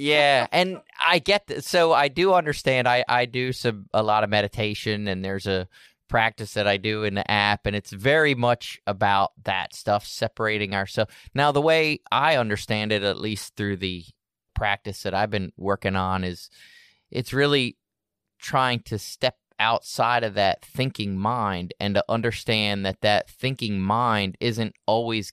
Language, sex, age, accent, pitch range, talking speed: English, male, 20-39, American, 95-120 Hz, 170 wpm